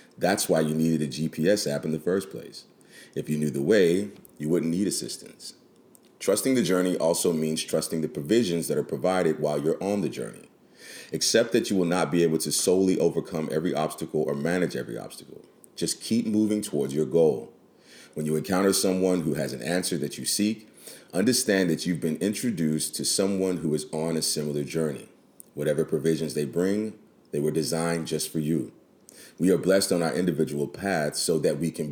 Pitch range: 75-90 Hz